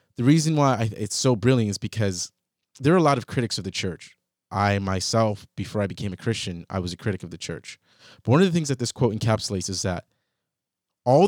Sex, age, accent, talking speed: male, 30-49, American, 230 wpm